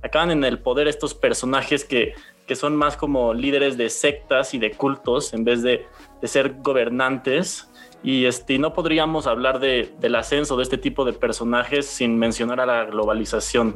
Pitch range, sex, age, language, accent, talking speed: 115-145 Hz, male, 20-39, Spanish, Mexican, 185 wpm